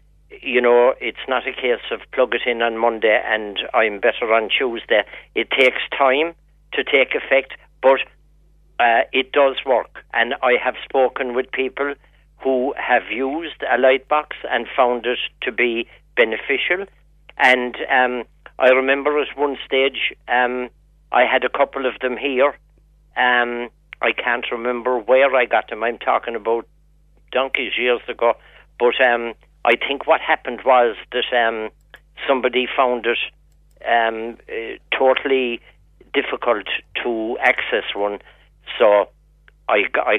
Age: 60-79